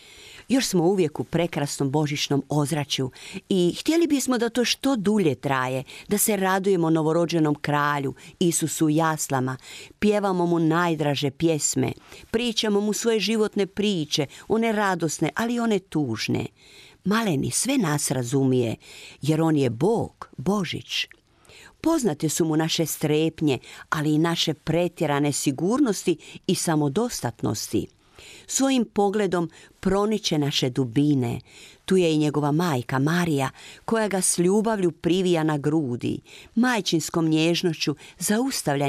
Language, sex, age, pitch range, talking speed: Croatian, female, 50-69, 145-200 Hz, 120 wpm